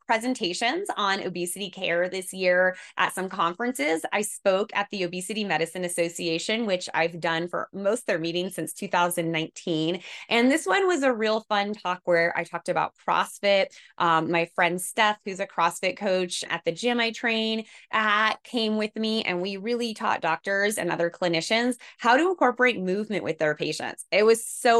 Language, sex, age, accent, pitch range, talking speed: English, female, 20-39, American, 170-220 Hz, 180 wpm